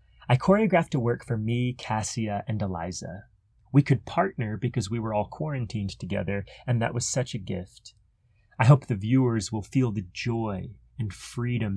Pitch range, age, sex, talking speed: 105-125 Hz, 30-49, male, 175 wpm